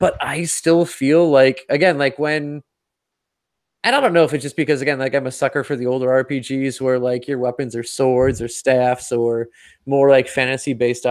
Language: English